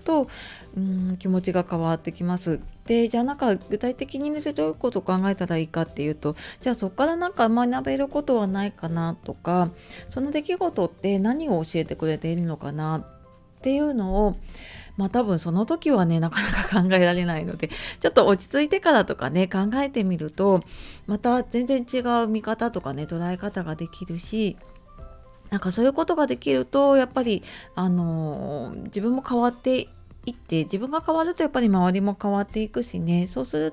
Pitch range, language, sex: 170-235 Hz, Japanese, female